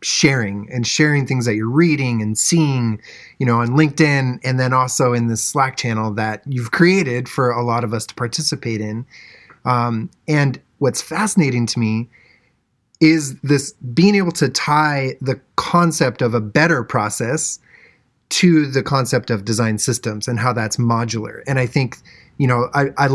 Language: English